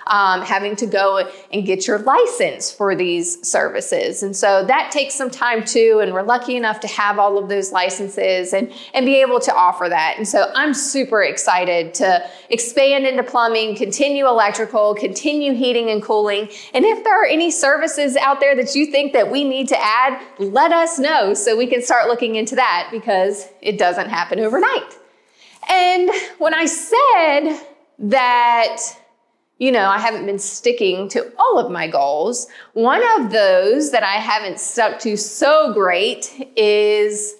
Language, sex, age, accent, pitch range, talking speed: English, female, 30-49, American, 210-305 Hz, 175 wpm